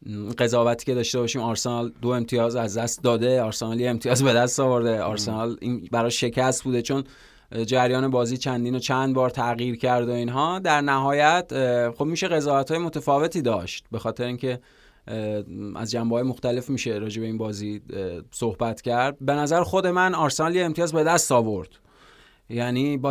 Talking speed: 160 wpm